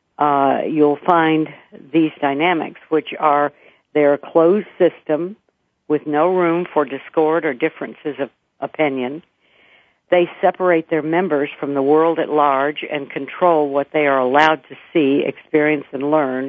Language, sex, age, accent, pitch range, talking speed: English, female, 60-79, American, 140-165 Hz, 145 wpm